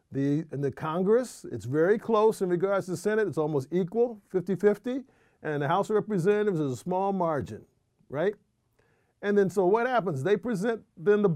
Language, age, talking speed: English, 50-69, 180 wpm